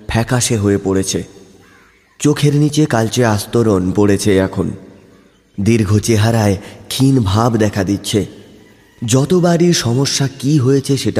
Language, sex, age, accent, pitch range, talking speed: Bengali, male, 30-49, native, 100-130 Hz, 120 wpm